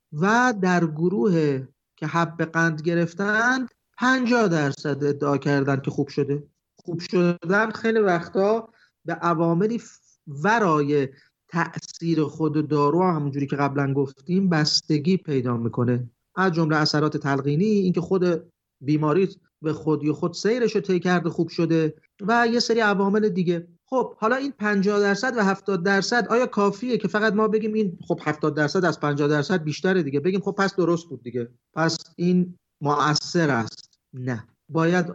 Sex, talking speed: male, 150 wpm